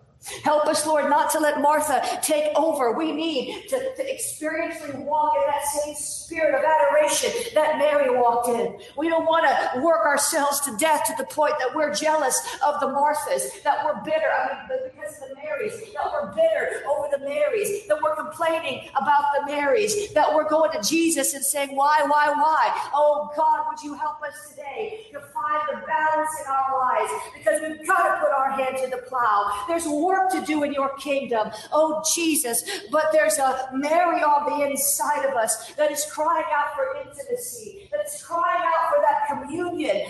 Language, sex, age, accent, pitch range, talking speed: English, female, 50-69, American, 280-315 Hz, 190 wpm